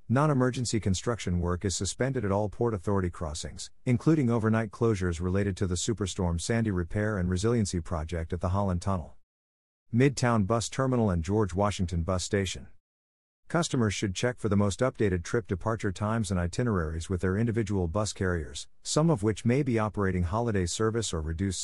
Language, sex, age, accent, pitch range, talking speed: English, male, 50-69, American, 90-115 Hz, 170 wpm